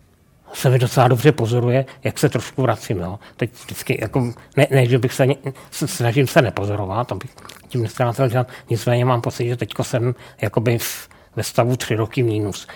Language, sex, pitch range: Czech, male, 115-130 Hz